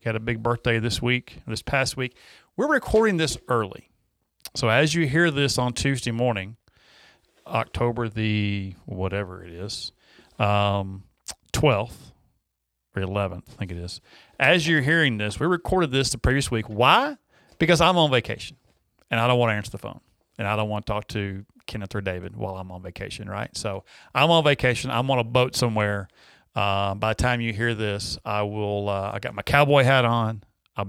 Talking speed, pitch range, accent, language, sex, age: 190 wpm, 100-130 Hz, American, English, male, 40-59